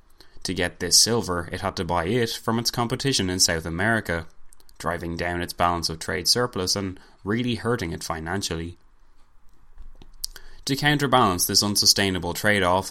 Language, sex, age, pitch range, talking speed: English, male, 20-39, 85-105 Hz, 150 wpm